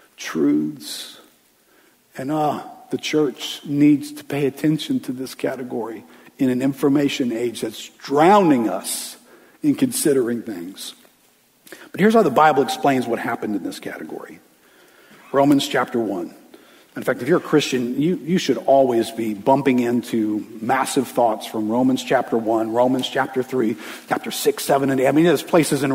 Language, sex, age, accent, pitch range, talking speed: English, male, 50-69, American, 120-155 Hz, 155 wpm